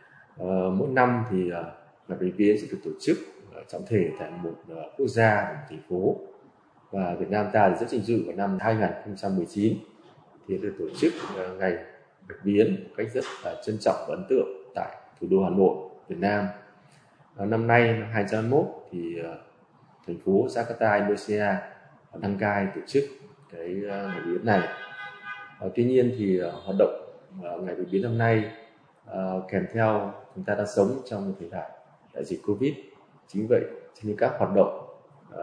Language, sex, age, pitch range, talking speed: Vietnamese, male, 20-39, 95-125 Hz, 190 wpm